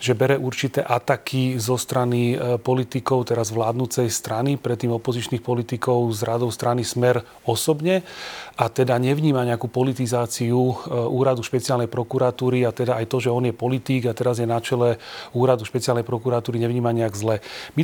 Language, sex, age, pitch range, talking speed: Slovak, male, 30-49, 120-135 Hz, 155 wpm